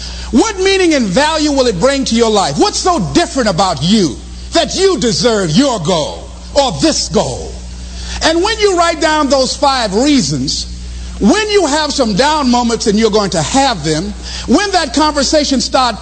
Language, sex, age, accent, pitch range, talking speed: English, male, 50-69, American, 210-320 Hz, 175 wpm